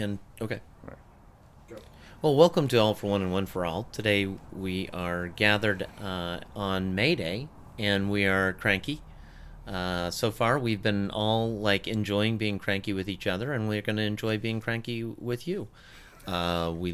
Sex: male